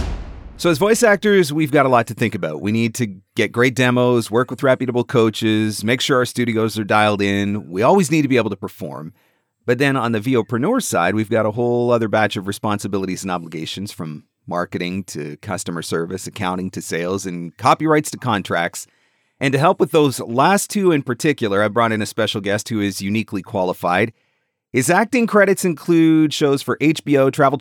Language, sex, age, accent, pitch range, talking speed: English, male, 40-59, American, 100-140 Hz, 200 wpm